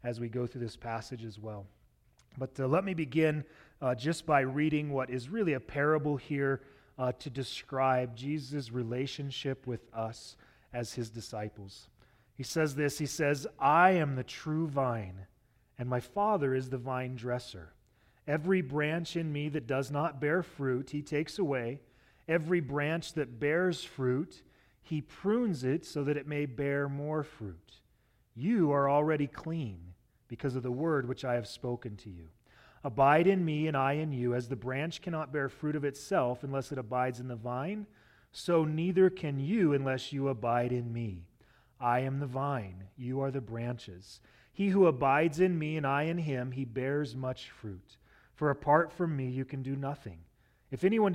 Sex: male